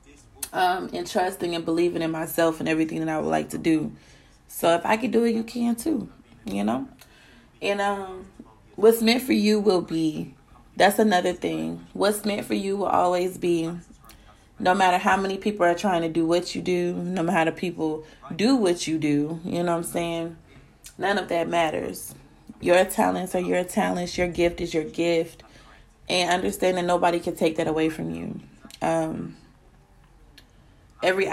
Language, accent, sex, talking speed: English, American, female, 190 wpm